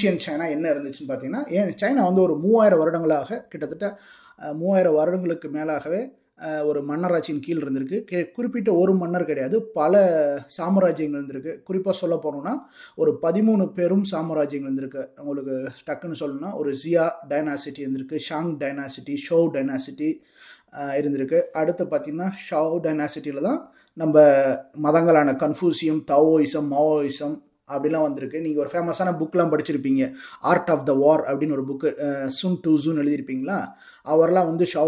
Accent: native